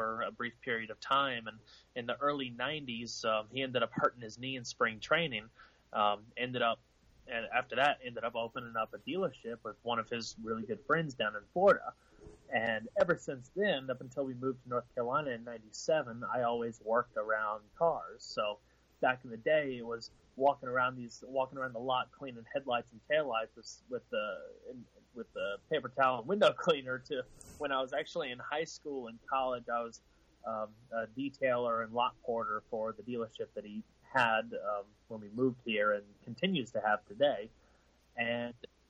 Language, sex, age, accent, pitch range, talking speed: English, male, 30-49, American, 110-130 Hz, 195 wpm